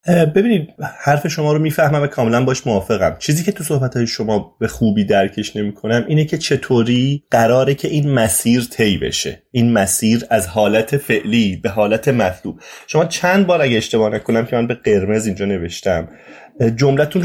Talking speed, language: 165 wpm, Persian